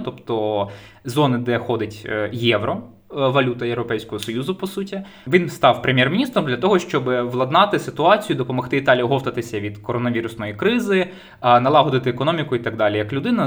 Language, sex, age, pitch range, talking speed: Ukrainian, male, 20-39, 120-160 Hz, 140 wpm